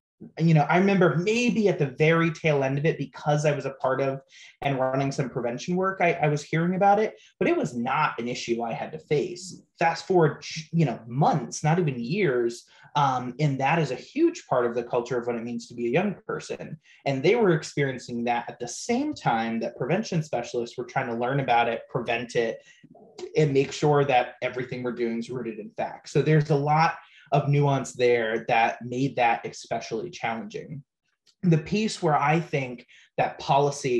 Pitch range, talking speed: 125-165 Hz, 205 wpm